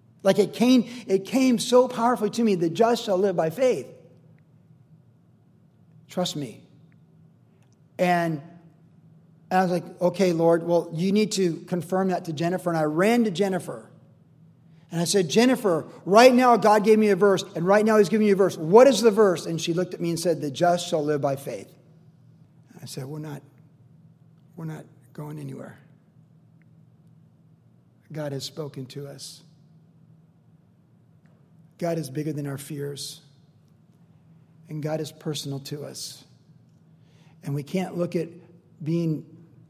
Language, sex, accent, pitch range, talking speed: English, male, American, 145-175 Hz, 155 wpm